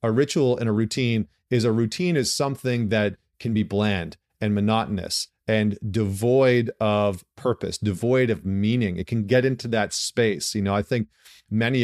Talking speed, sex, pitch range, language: 170 wpm, male, 100-125 Hz, English